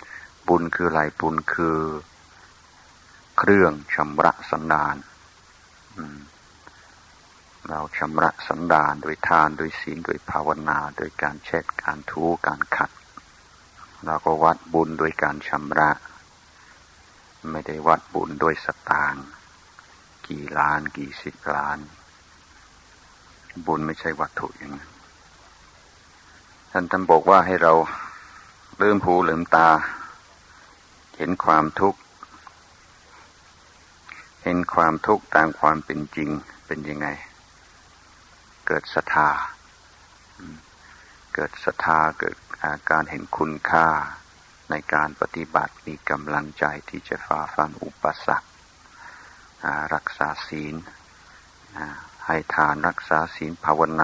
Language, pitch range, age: Thai, 75-80 Hz, 60-79